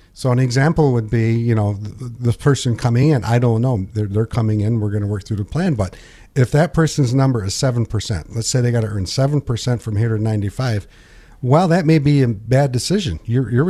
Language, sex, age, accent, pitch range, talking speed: English, male, 50-69, American, 110-145 Hz, 225 wpm